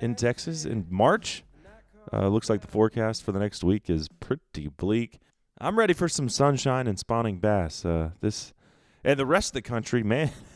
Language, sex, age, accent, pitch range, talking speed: English, male, 30-49, American, 90-120 Hz, 190 wpm